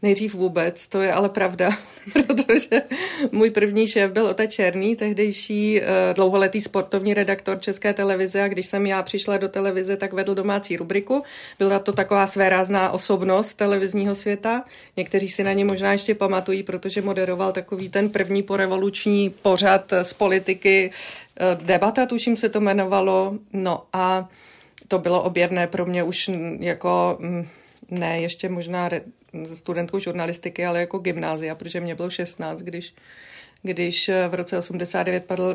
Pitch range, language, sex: 180-200 Hz, Czech, female